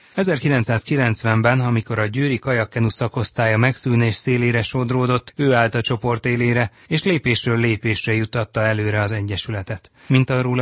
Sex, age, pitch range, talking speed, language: male, 30-49, 110-125 Hz, 130 wpm, Hungarian